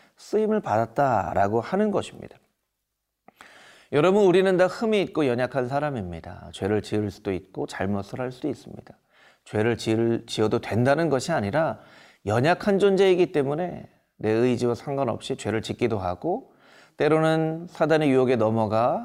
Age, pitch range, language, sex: 30-49, 115-180 Hz, Korean, male